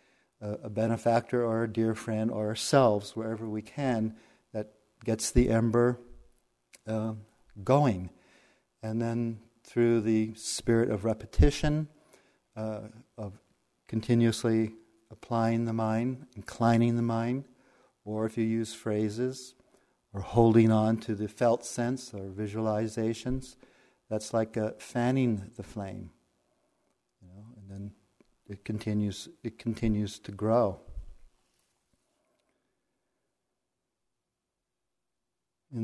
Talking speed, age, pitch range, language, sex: 100 wpm, 40-59, 105-120 Hz, English, male